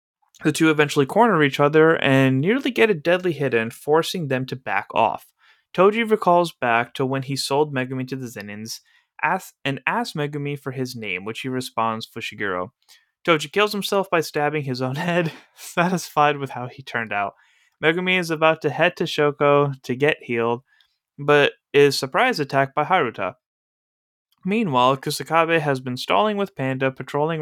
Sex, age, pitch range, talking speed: male, 20-39, 120-165 Hz, 170 wpm